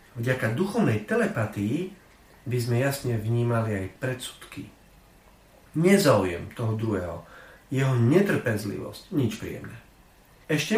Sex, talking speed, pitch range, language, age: male, 95 wpm, 110-160 Hz, Slovak, 40-59